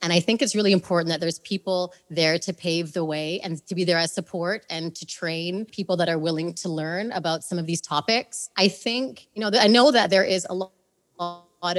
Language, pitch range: English, 165-190 Hz